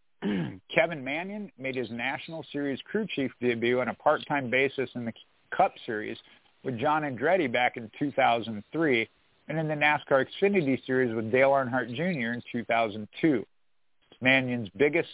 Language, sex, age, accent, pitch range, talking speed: English, male, 50-69, American, 120-145 Hz, 145 wpm